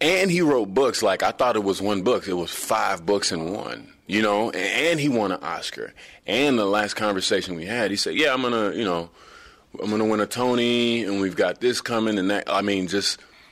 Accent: American